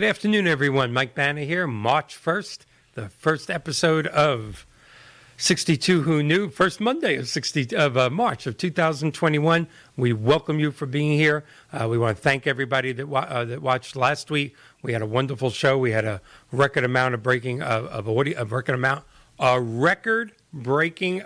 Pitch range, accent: 125-155 Hz, American